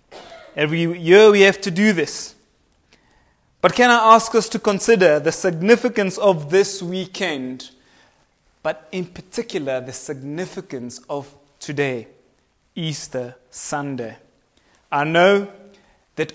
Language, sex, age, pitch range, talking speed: English, male, 30-49, 140-190 Hz, 115 wpm